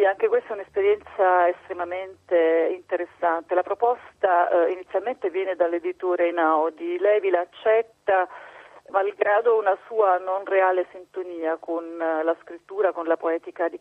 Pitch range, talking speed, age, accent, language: 175-205 Hz, 125 wpm, 40-59, native, Italian